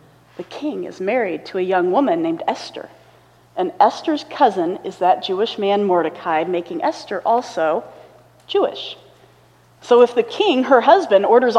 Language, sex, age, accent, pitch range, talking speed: English, female, 40-59, American, 225-345 Hz, 150 wpm